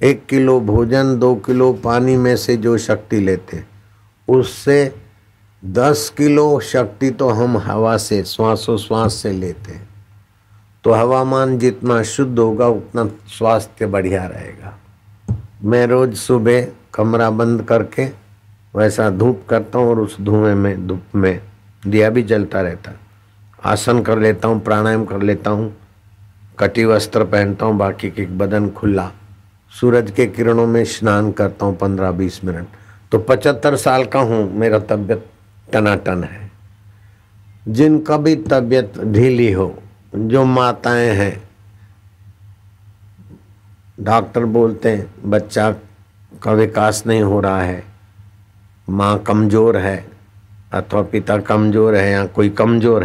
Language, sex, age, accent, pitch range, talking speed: Hindi, male, 60-79, native, 100-115 Hz, 130 wpm